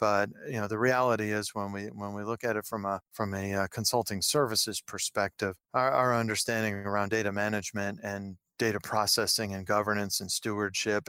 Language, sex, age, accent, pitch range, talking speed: English, male, 40-59, American, 100-115 Hz, 185 wpm